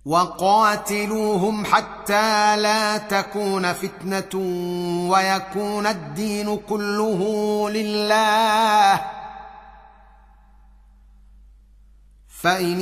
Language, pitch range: Arabic, 145-200 Hz